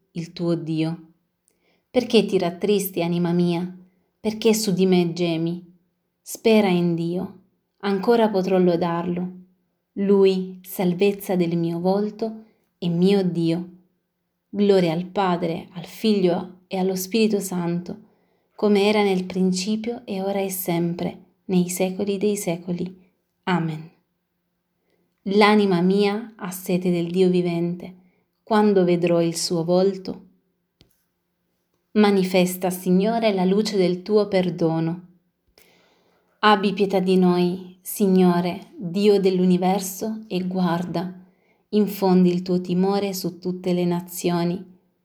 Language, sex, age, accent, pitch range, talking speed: Italian, female, 30-49, native, 175-200 Hz, 115 wpm